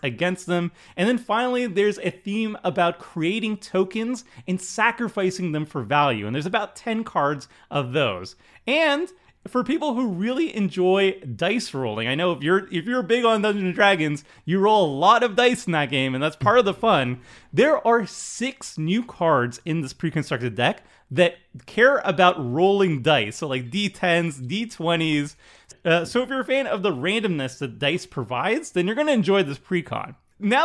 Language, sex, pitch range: English, male, 145-215 Hz